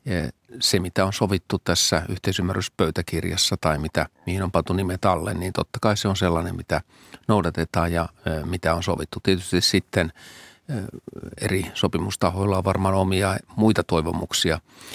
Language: Finnish